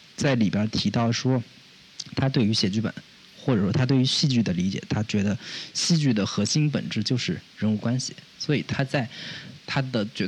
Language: Chinese